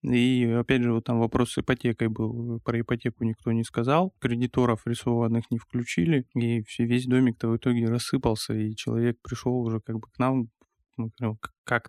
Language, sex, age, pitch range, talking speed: Russian, male, 20-39, 115-125 Hz, 165 wpm